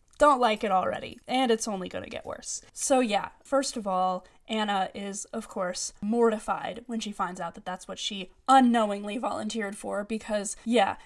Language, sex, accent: English, female, American